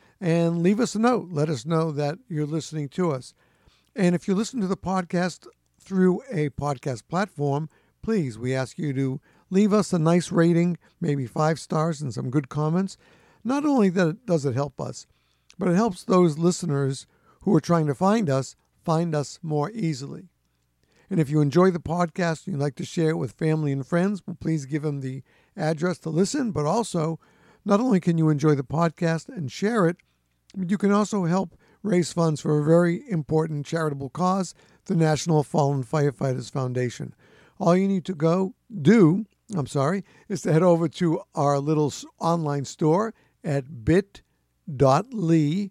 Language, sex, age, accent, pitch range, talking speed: English, male, 60-79, American, 145-185 Hz, 175 wpm